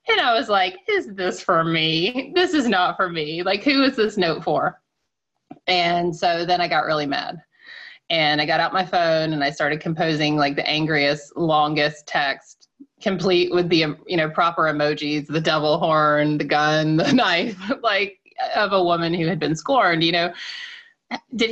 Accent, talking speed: American, 185 wpm